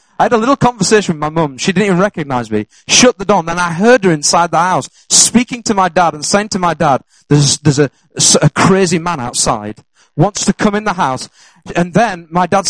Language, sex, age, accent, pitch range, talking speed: English, male, 30-49, British, 155-210 Hz, 235 wpm